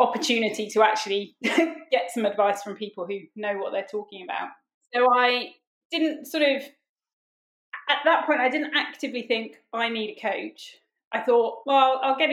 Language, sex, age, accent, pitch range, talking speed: English, female, 20-39, British, 210-255 Hz, 170 wpm